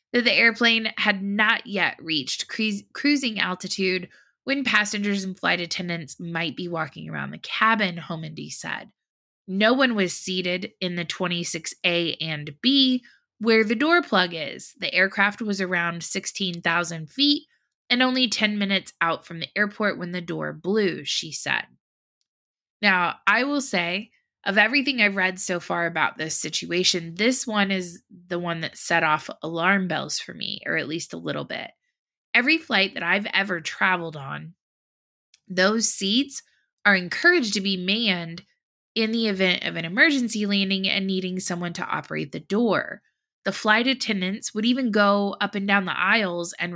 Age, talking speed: 20-39, 165 wpm